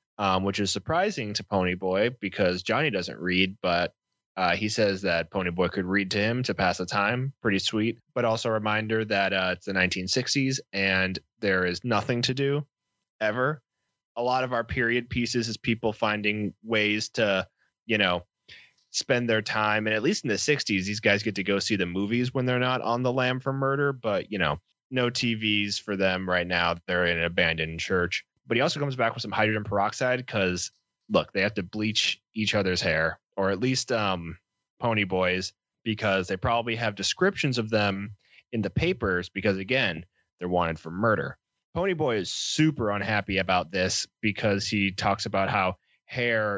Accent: American